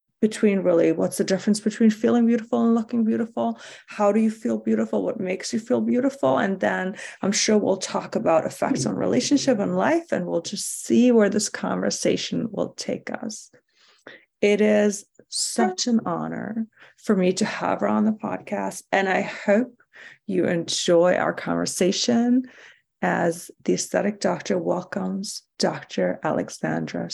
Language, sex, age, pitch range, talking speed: English, female, 30-49, 195-245 Hz, 155 wpm